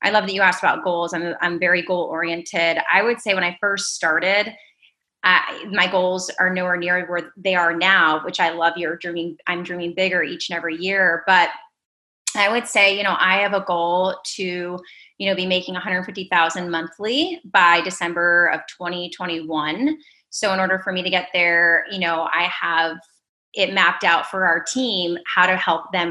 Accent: American